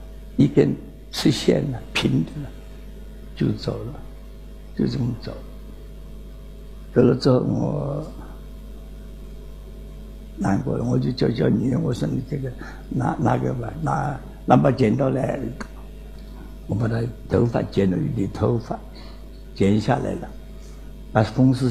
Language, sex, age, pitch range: Chinese, male, 60-79, 110-170 Hz